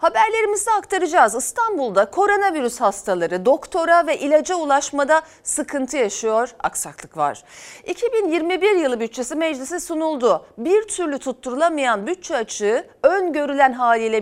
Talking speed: 105 wpm